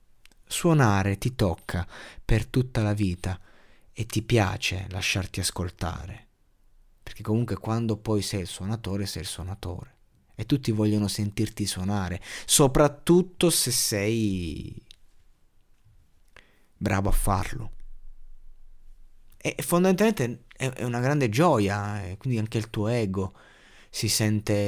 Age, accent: 30-49, native